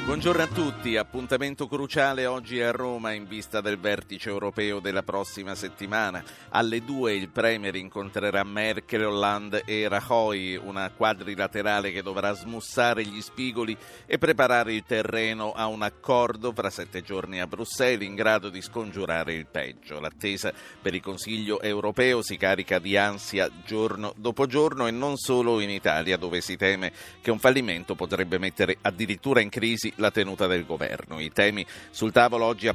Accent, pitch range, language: native, 100-125 Hz, Italian